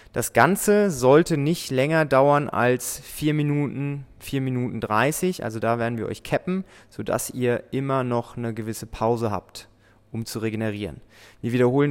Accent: German